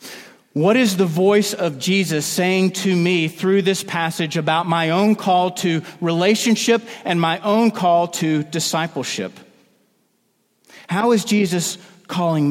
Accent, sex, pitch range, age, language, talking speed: American, male, 165-205 Hz, 40-59, English, 135 wpm